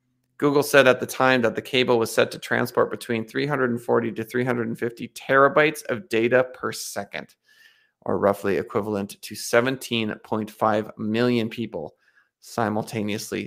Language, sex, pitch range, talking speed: English, male, 110-130 Hz, 130 wpm